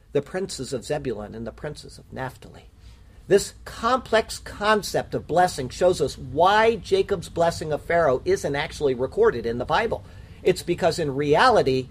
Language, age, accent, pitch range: English, 50-69, American, 120-185 Hz